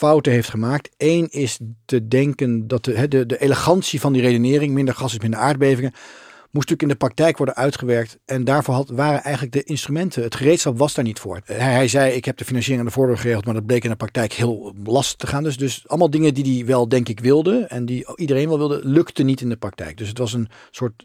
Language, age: Dutch, 40-59